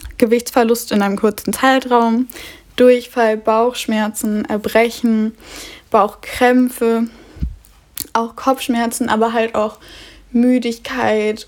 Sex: female